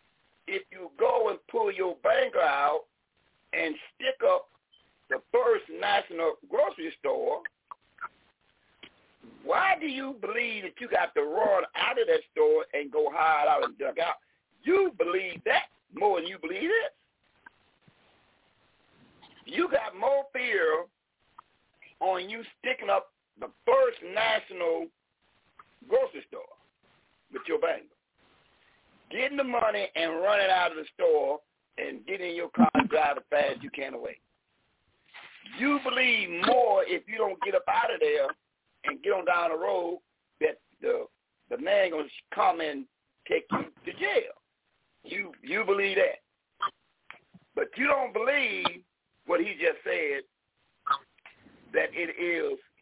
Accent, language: American, English